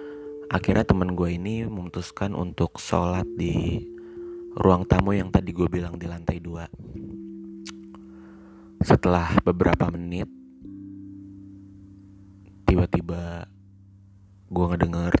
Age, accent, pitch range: 30-49, native, 85-100 Hz